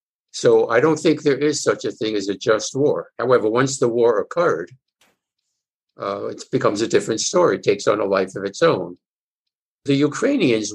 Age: 60-79